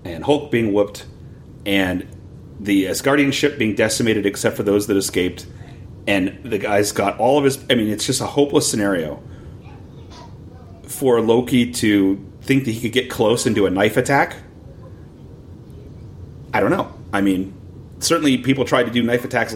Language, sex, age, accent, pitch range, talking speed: English, male, 30-49, American, 100-125 Hz, 170 wpm